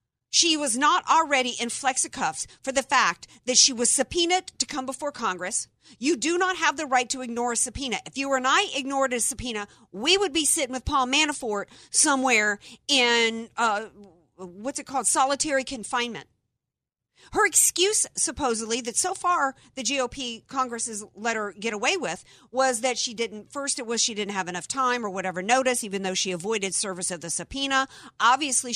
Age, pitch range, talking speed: 50-69, 215-285 Hz, 185 wpm